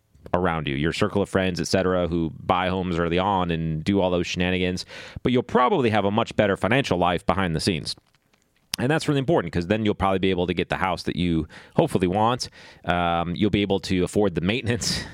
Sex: male